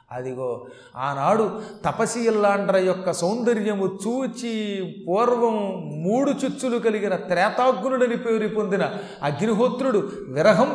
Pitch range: 170-220 Hz